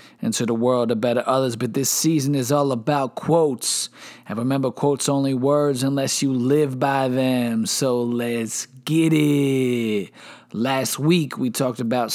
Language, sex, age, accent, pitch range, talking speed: English, male, 20-39, American, 120-150 Hz, 160 wpm